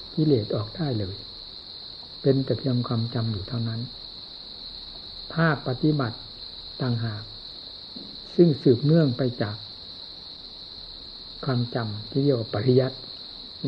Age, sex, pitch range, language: 60-79, male, 105-135 Hz, Thai